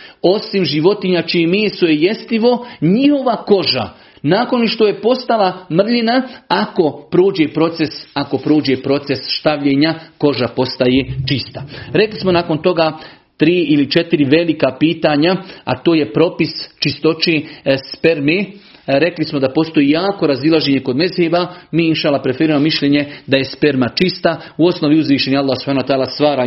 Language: Croatian